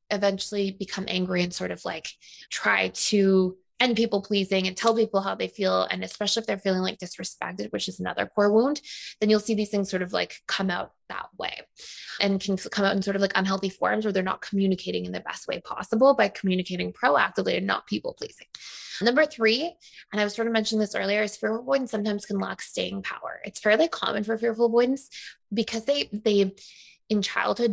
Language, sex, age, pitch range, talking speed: English, female, 20-39, 195-225 Hz, 210 wpm